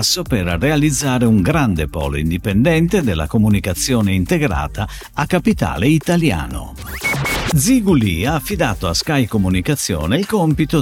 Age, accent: 50-69, native